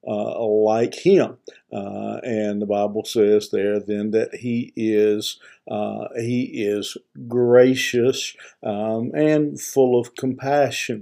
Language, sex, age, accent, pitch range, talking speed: English, male, 50-69, American, 105-120 Hz, 120 wpm